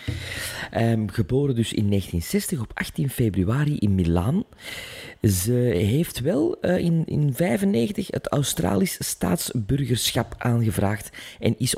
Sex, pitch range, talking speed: male, 100-140 Hz, 110 wpm